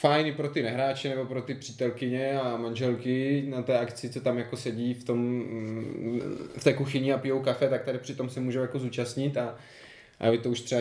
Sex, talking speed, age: male, 205 wpm, 20-39